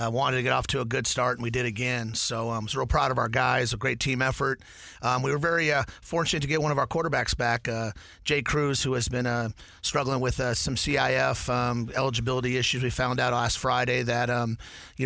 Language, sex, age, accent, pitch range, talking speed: English, male, 30-49, American, 120-135 Hz, 245 wpm